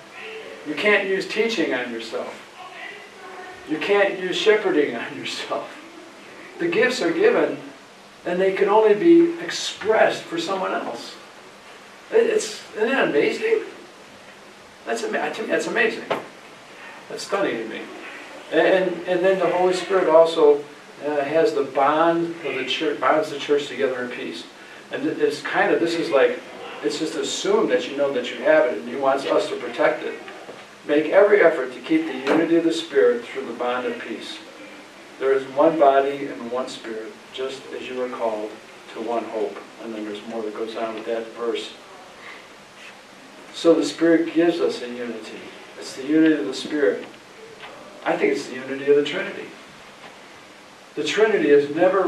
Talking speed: 165 wpm